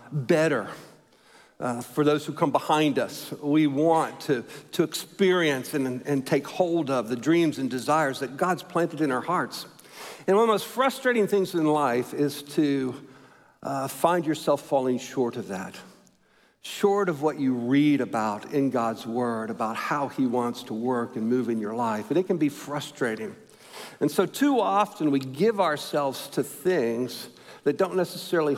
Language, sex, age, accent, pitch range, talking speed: English, male, 60-79, American, 130-175 Hz, 175 wpm